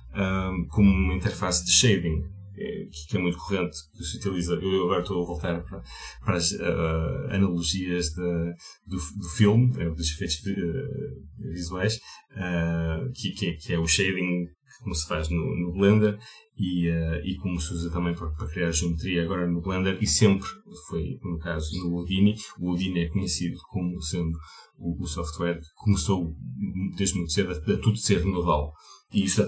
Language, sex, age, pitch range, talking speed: Portuguese, male, 30-49, 85-100 Hz, 175 wpm